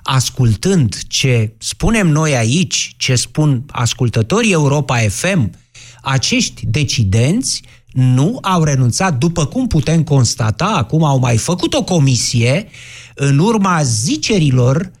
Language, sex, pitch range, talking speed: Romanian, male, 120-180 Hz, 110 wpm